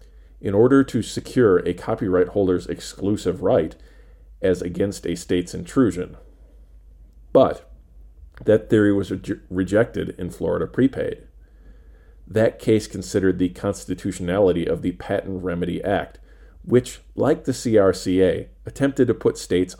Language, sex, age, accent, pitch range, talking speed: English, male, 40-59, American, 85-100 Hz, 120 wpm